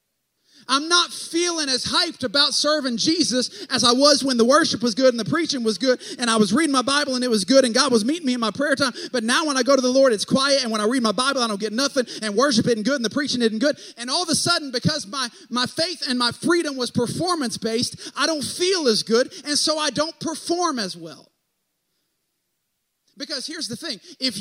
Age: 30-49